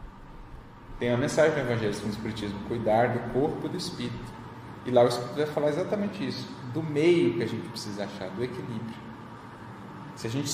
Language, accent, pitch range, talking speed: Portuguese, Brazilian, 115-145 Hz, 180 wpm